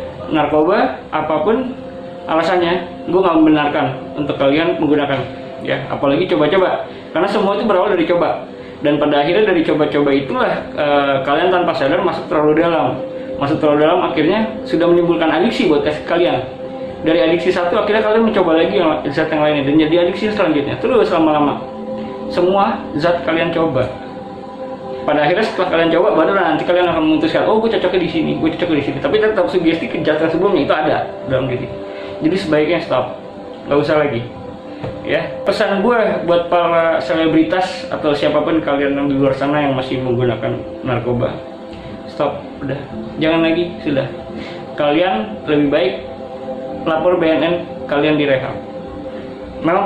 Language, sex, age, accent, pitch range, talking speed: Indonesian, male, 20-39, native, 145-175 Hz, 150 wpm